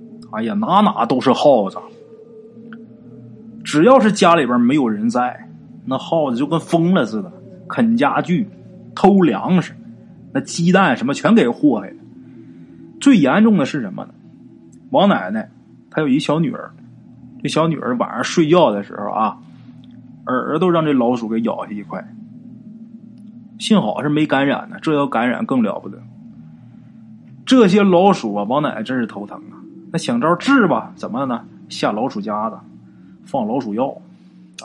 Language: Chinese